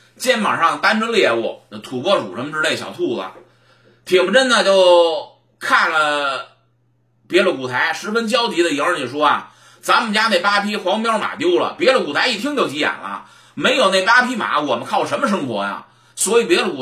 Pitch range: 170-250 Hz